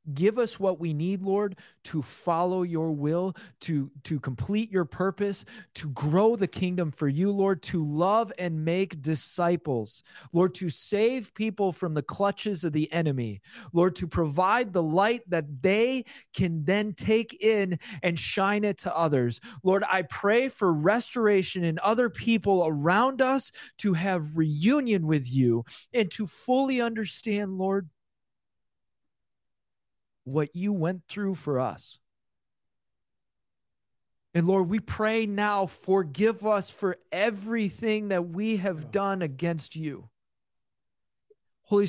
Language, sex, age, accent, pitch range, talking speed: English, male, 30-49, American, 155-205 Hz, 135 wpm